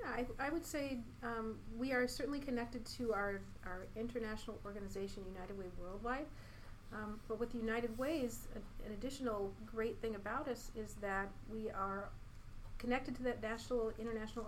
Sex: female